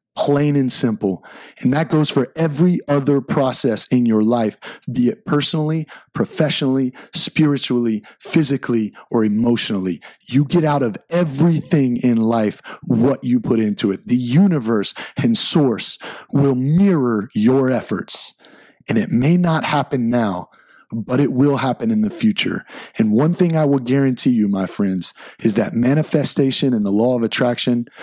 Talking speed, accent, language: 150 wpm, American, English